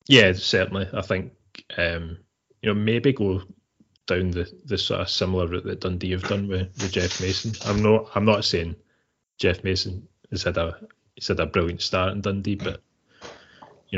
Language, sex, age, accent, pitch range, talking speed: English, male, 20-39, British, 90-100 Hz, 180 wpm